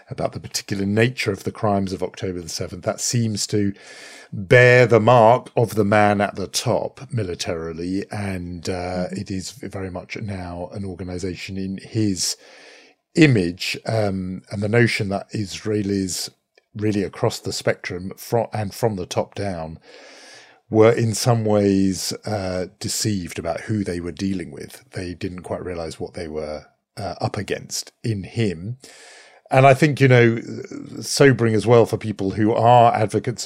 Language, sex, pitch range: English, male, 95-115 Hz